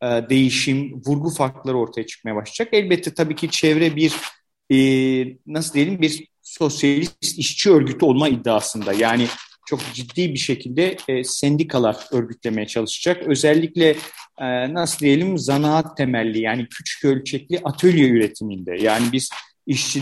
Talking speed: 120 wpm